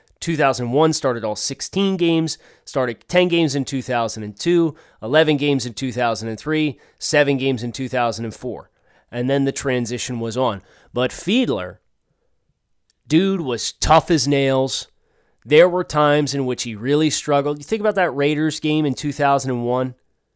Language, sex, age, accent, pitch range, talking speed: English, male, 30-49, American, 125-165 Hz, 140 wpm